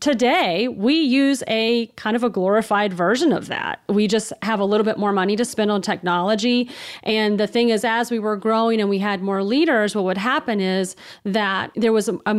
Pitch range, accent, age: 185-225 Hz, American, 30-49